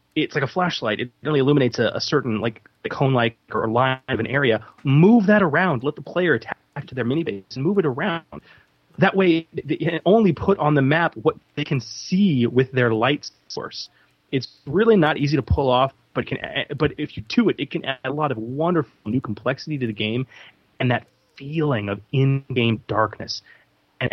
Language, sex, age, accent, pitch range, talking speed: English, male, 30-49, American, 110-150 Hz, 210 wpm